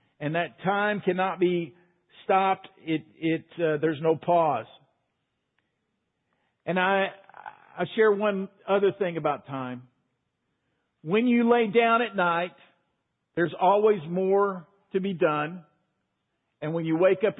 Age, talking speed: 50-69, 130 wpm